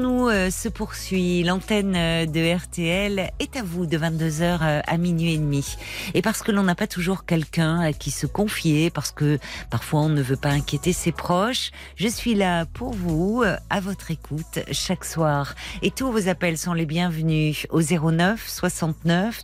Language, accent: French, French